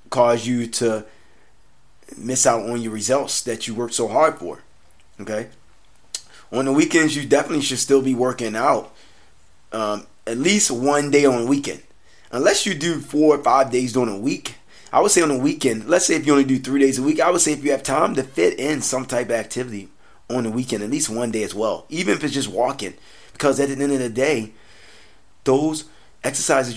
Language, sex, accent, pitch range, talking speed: English, male, American, 110-135 Hz, 215 wpm